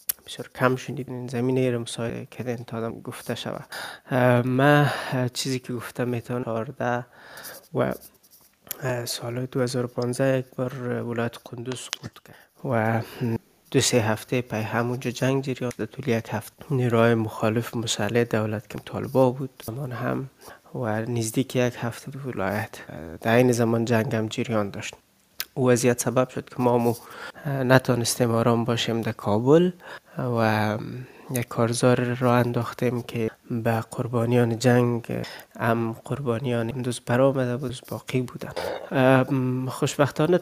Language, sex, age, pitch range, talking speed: Persian, male, 20-39, 115-130 Hz, 130 wpm